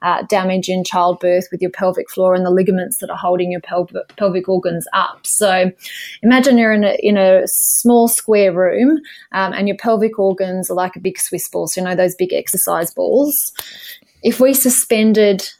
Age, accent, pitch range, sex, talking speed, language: 20-39, Australian, 185-230 Hz, female, 185 wpm, English